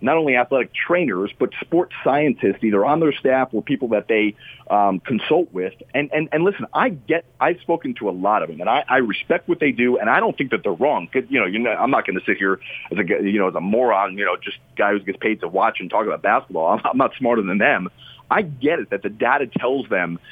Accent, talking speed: American, 270 wpm